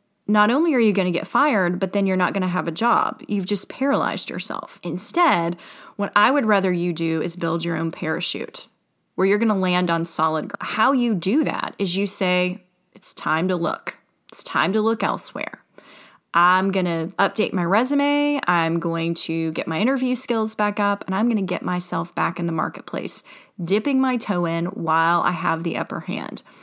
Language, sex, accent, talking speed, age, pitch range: English, female, American, 205 wpm, 30-49, 170-210 Hz